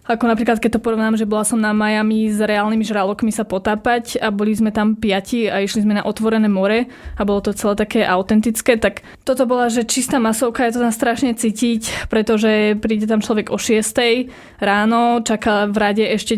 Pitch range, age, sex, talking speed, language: 210-235 Hz, 20-39, female, 200 wpm, Slovak